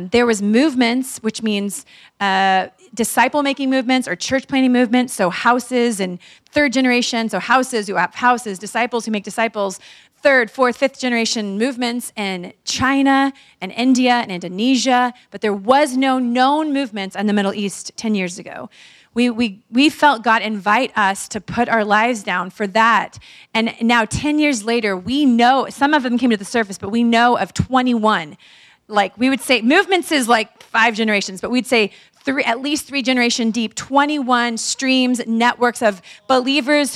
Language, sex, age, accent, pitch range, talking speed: English, female, 30-49, American, 215-260 Hz, 165 wpm